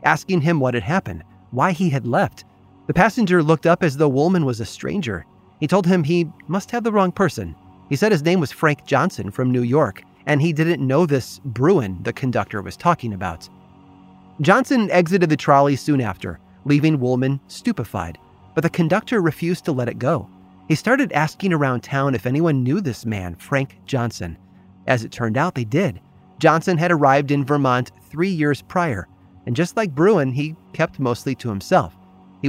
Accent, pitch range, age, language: American, 110-170 Hz, 30-49, English